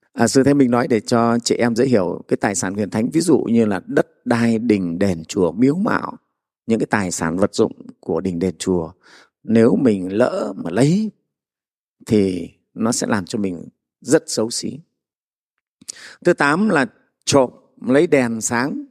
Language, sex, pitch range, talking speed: Vietnamese, male, 105-140 Hz, 180 wpm